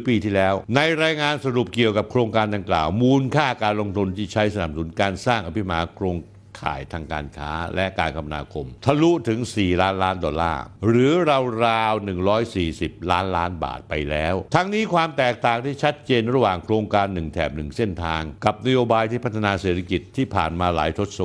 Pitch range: 90-130 Hz